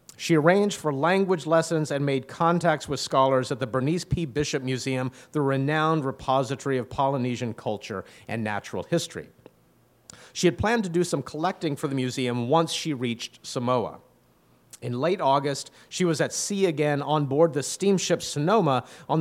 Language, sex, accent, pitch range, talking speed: English, male, American, 125-160 Hz, 165 wpm